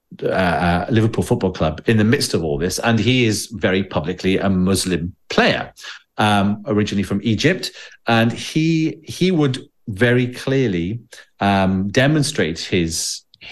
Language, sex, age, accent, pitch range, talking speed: English, male, 40-59, British, 95-125 Hz, 140 wpm